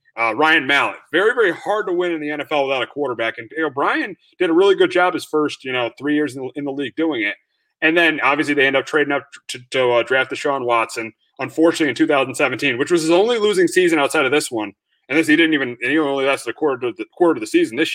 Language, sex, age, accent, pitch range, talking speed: English, male, 30-49, American, 135-180 Hz, 275 wpm